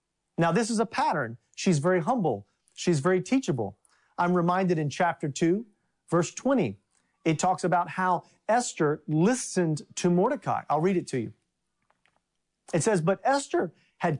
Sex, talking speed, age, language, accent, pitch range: male, 150 wpm, 40-59, English, American, 150-195 Hz